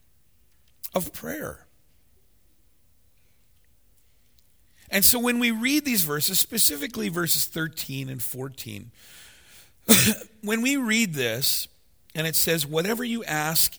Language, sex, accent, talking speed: English, male, American, 105 wpm